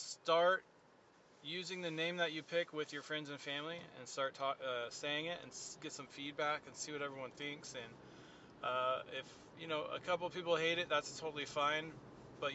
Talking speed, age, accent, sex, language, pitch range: 190 wpm, 20-39, American, male, English, 125-155 Hz